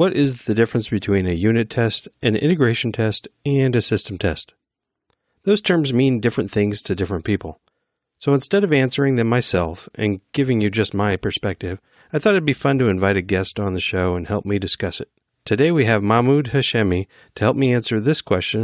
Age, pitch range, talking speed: 40-59, 100-135 Hz, 205 wpm